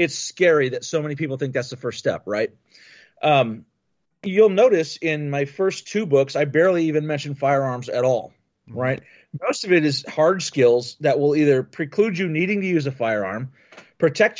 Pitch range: 135-175 Hz